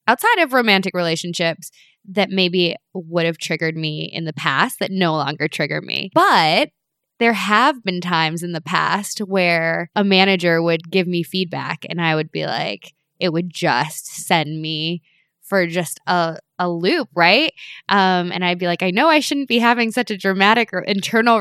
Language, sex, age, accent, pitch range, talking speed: English, female, 10-29, American, 160-210 Hz, 180 wpm